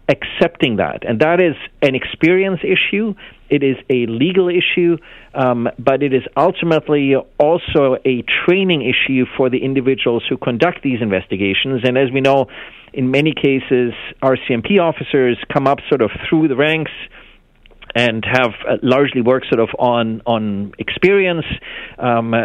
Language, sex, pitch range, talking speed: English, male, 120-150 Hz, 150 wpm